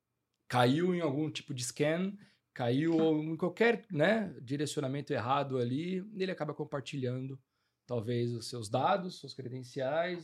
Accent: Brazilian